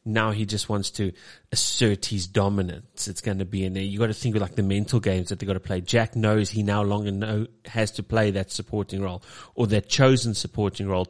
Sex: male